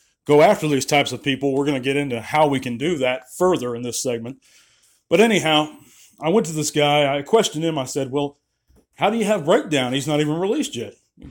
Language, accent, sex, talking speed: English, American, male, 235 wpm